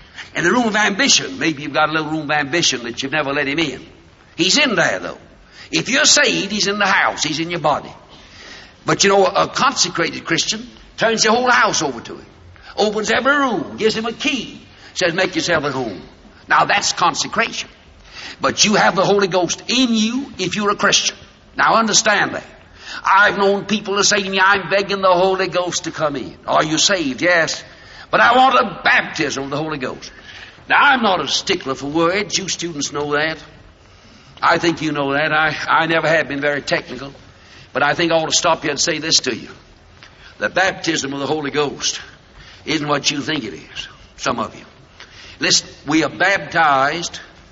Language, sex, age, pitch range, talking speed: English, male, 60-79, 145-200 Hz, 200 wpm